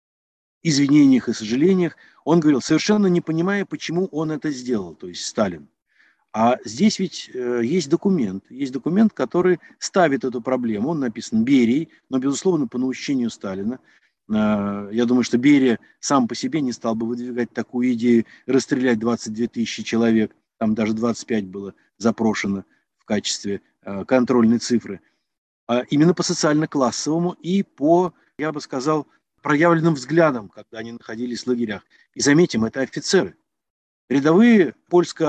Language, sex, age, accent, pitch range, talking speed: Russian, male, 50-69, native, 120-160 Hz, 140 wpm